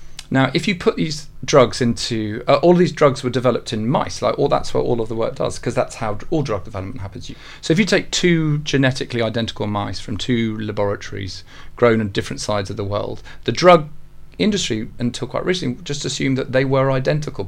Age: 40-59